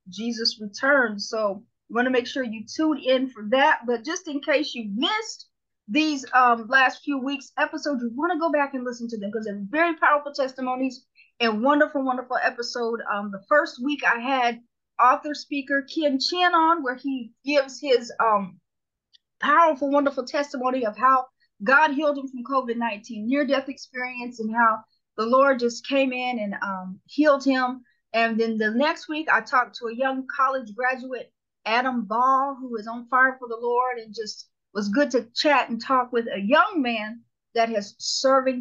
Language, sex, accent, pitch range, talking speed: English, female, American, 230-285 Hz, 185 wpm